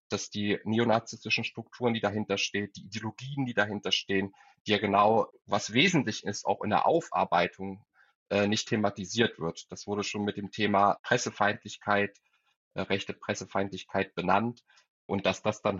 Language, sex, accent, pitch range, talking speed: German, male, German, 100-115 Hz, 150 wpm